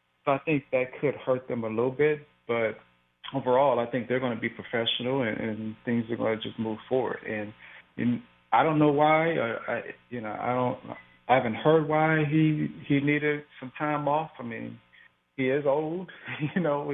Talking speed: 190 wpm